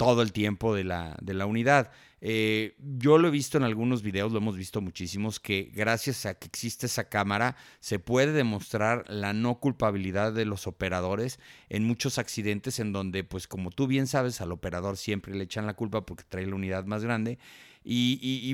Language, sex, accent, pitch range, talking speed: Spanish, male, Mexican, 105-140 Hz, 200 wpm